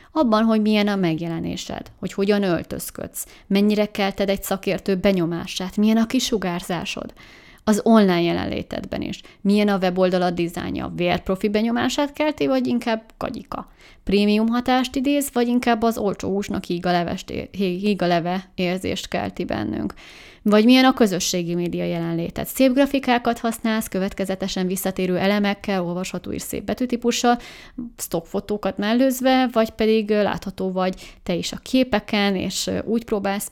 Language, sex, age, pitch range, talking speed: Hungarian, female, 30-49, 185-225 Hz, 130 wpm